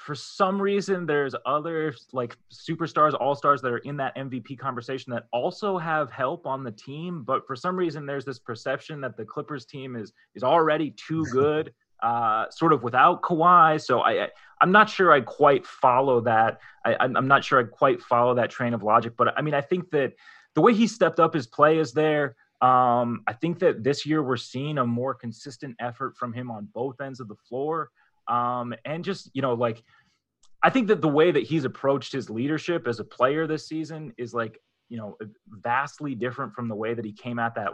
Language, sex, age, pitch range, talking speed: English, male, 30-49, 120-155 Hz, 210 wpm